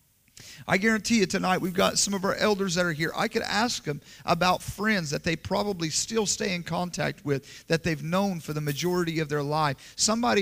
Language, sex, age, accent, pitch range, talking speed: English, male, 40-59, American, 155-195 Hz, 215 wpm